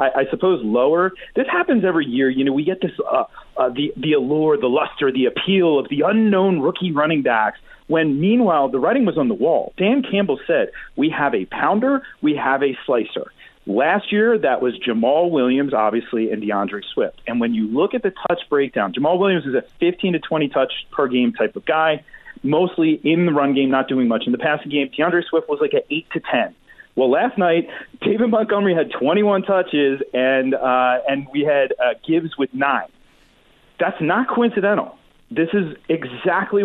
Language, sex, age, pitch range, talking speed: English, male, 40-59, 140-200 Hz, 195 wpm